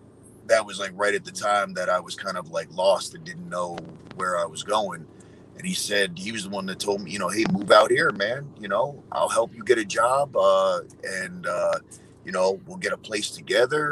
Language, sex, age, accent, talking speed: English, male, 30-49, American, 240 wpm